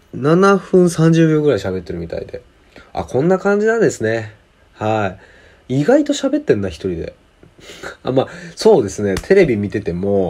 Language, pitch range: Japanese, 90-115 Hz